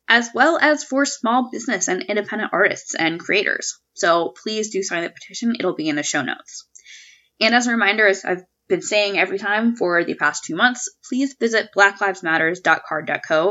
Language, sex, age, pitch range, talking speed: English, female, 10-29, 185-275 Hz, 180 wpm